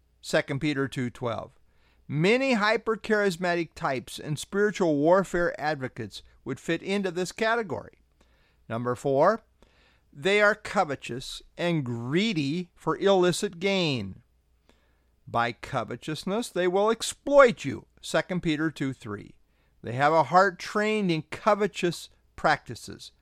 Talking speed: 110 wpm